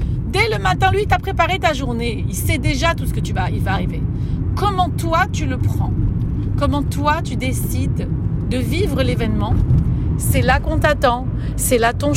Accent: French